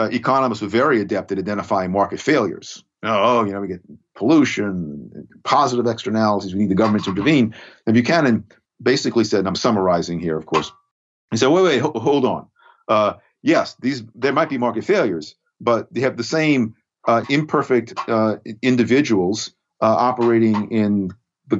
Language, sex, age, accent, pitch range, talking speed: English, male, 50-69, American, 100-120 Hz, 175 wpm